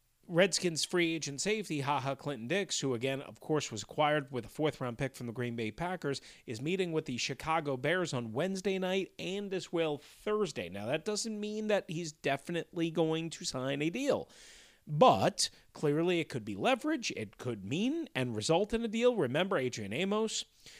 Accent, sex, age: American, male, 40-59